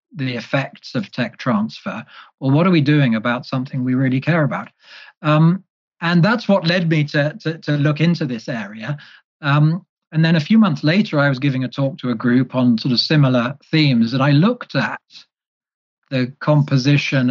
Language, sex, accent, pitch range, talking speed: English, male, British, 125-155 Hz, 190 wpm